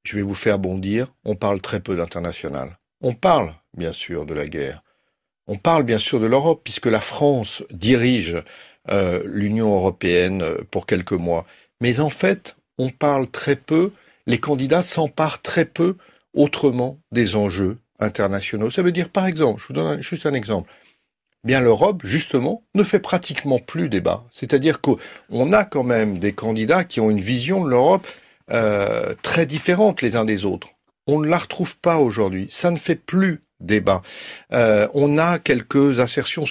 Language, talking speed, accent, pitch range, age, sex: French, 175 wpm, French, 110-165 Hz, 60-79, male